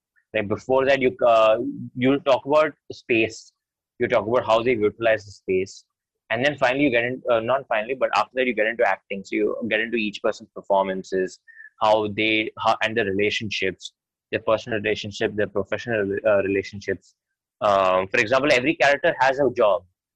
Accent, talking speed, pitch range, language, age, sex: Indian, 180 wpm, 105-130 Hz, English, 20-39, male